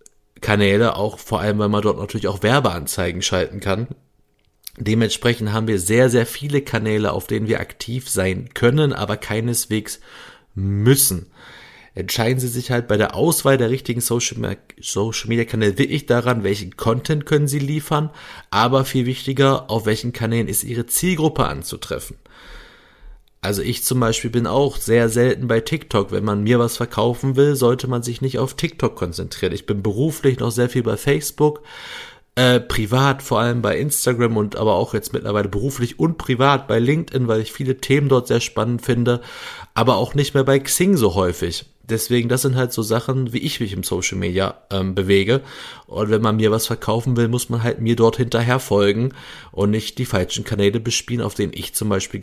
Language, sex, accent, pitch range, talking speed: German, male, German, 105-130 Hz, 185 wpm